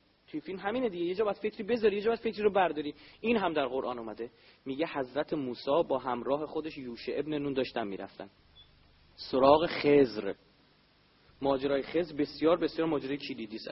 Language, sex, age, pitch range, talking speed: Persian, male, 30-49, 130-190 Hz, 160 wpm